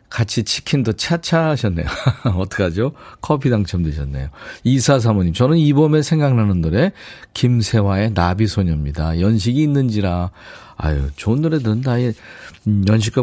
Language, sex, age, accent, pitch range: Korean, male, 40-59, native, 95-135 Hz